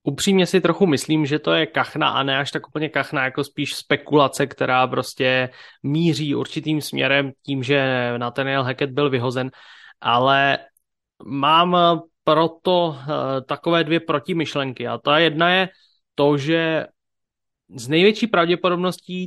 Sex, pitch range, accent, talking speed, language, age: male, 140-170 Hz, Czech, 135 wpm, English, 20-39